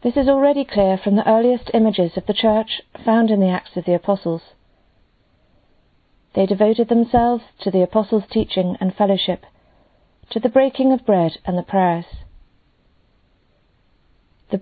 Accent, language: British, English